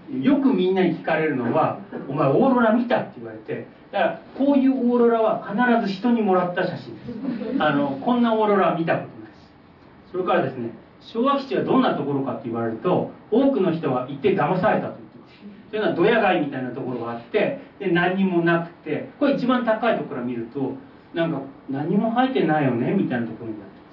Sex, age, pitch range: male, 40-59, 135-225 Hz